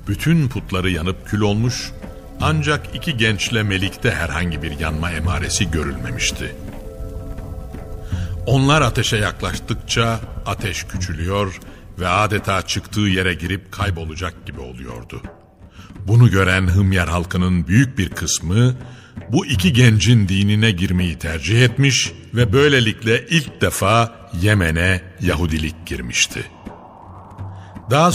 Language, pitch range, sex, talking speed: Turkish, 90-115 Hz, male, 105 wpm